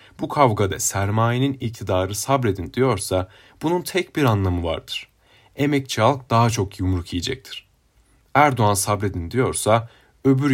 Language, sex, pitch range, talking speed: Turkish, male, 100-140 Hz, 120 wpm